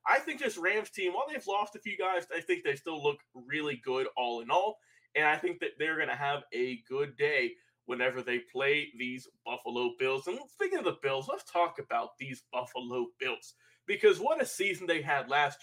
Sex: male